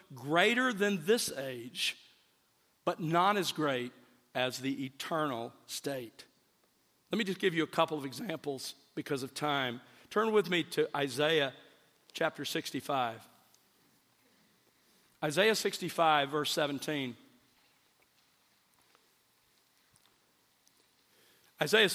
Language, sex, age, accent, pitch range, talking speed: English, male, 50-69, American, 155-205 Hz, 100 wpm